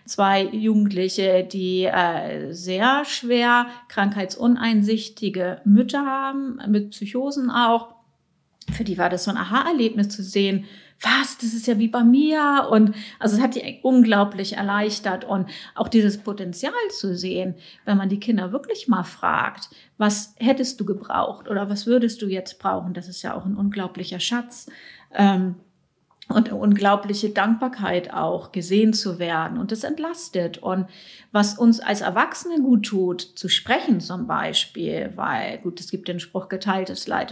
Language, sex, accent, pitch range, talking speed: German, female, German, 190-230 Hz, 155 wpm